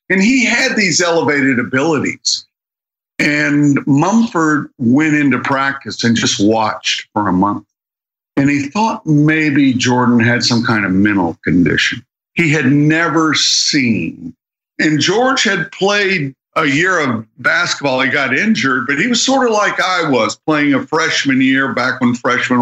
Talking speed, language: 155 wpm, English